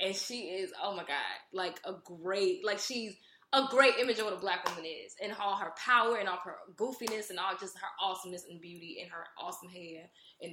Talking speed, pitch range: 230 wpm, 190-260 Hz